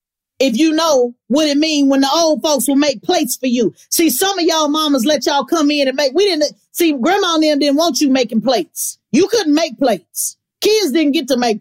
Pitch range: 230-305 Hz